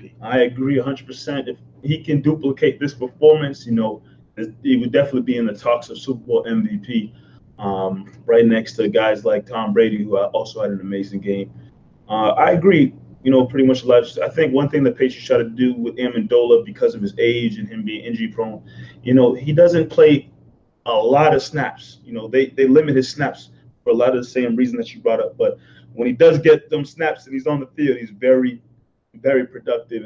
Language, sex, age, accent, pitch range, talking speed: English, male, 20-39, American, 115-150 Hz, 210 wpm